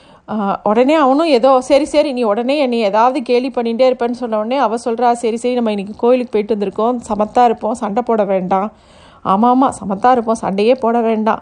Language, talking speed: Tamil, 185 wpm